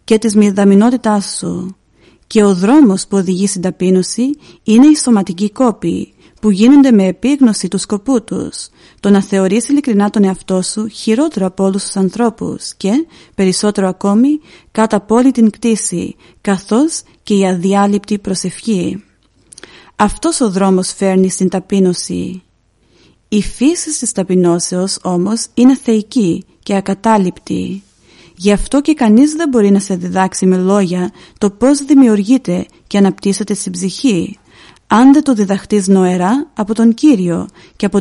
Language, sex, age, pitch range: Greek, female, 40-59, 185-225 Hz